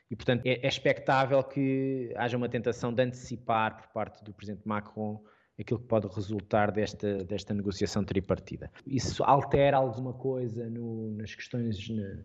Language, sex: Portuguese, male